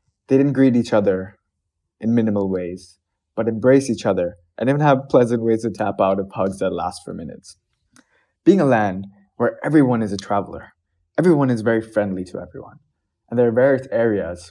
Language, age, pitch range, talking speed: English, 20-39, 100-125 Hz, 185 wpm